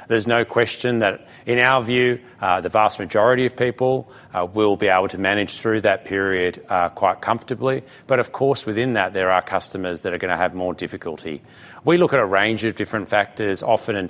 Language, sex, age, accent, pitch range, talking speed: English, male, 30-49, Australian, 95-120 Hz, 215 wpm